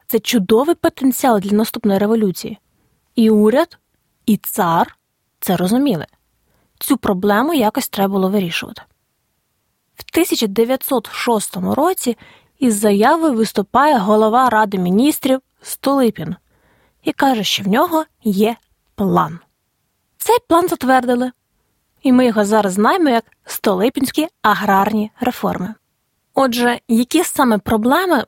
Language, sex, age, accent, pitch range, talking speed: Ukrainian, female, 20-39, native, 210-275 Hz, 110 wpm